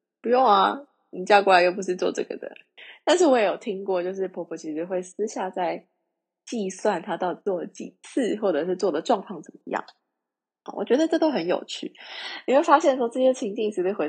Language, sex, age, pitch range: Chinese, female, 20-39, 180-255 Hz